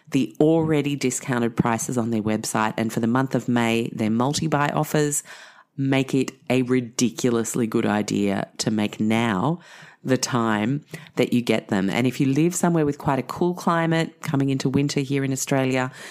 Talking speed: 175 wpm